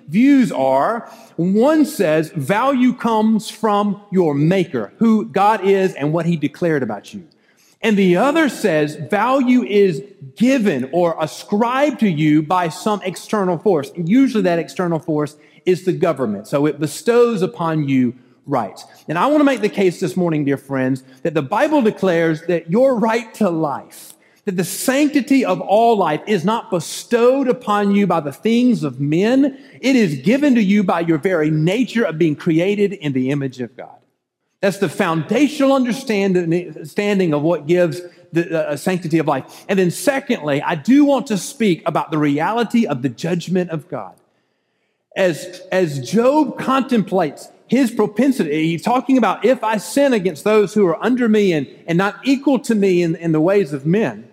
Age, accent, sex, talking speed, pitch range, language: 40-59, American, male, 175 wpm, 165-230 Hz, English